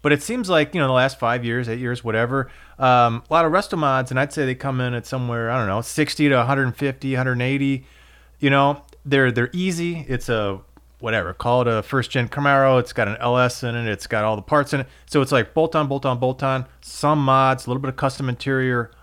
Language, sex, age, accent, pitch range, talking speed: English, male, 30-49, American, 120-150 Hz, 245 wpm